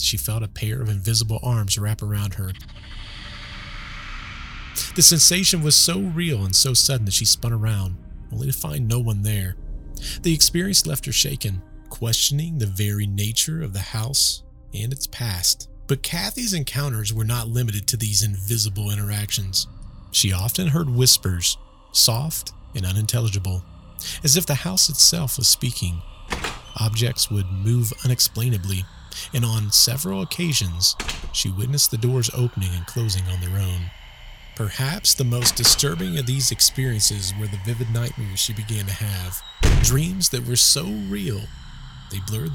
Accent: American